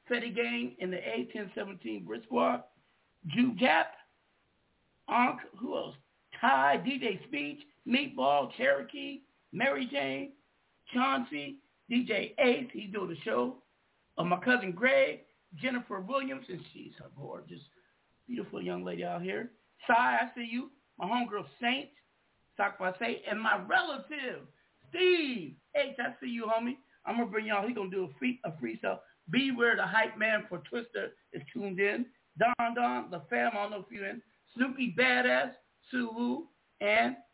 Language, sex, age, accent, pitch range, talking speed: English, male, 50-69, American, 190-260 Hz, 155 wpm